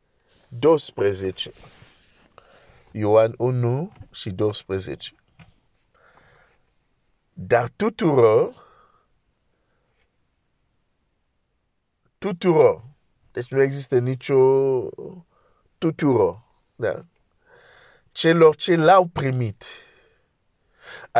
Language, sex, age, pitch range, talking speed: Romanian, male, 50-69, 115-165 Hz, 75 wpm